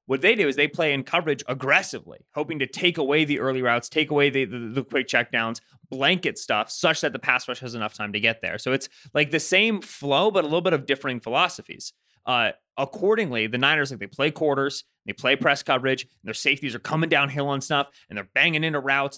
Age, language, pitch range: 20-39, English, 120-155 Hz